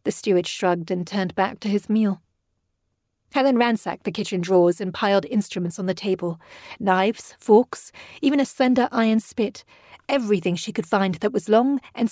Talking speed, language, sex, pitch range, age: 175 wpm, English, female, 180-215 Hz, 40-59